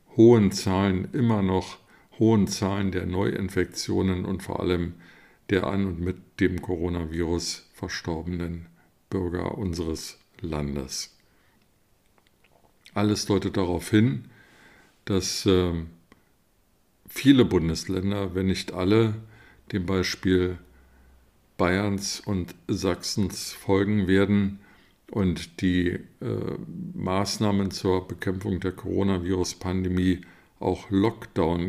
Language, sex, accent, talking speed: German, male, German, 95 wpm